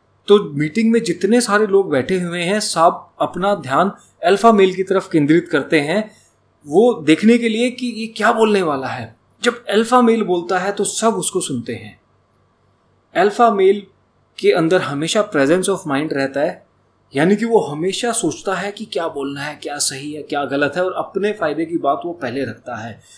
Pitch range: 130-210 Hz